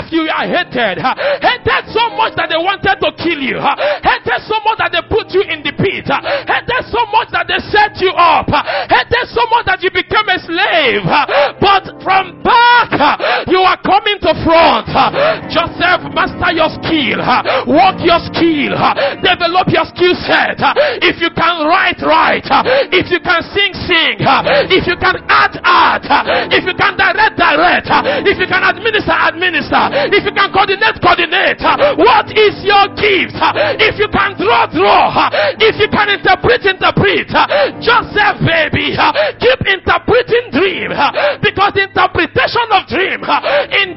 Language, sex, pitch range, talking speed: English, male, 345-425 Hz, 155 wpm